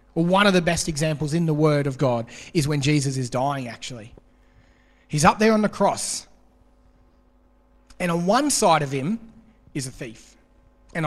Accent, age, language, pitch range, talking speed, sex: Australian, 30-49, English, 130-185 Hz, 180 wpm, male